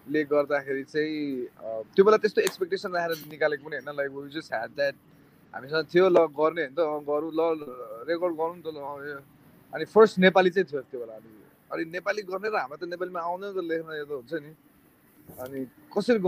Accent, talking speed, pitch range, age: Indian, 90 wpm, 135-165 Hz, 20-39